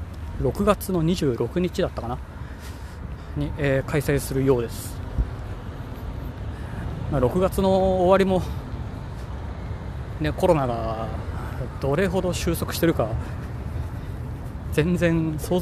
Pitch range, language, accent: 85-140 Hz, Japanese, native